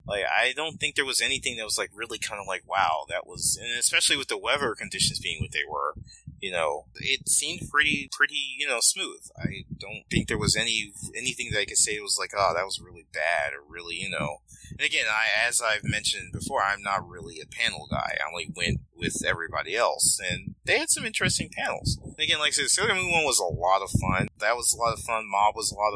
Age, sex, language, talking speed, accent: 30-49, male, English, 245 wpm, American